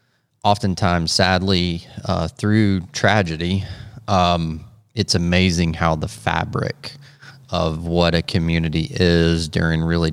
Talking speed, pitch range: 105 wpm, 85-100 Hz